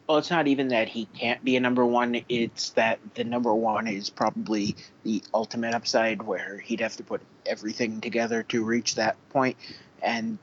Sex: male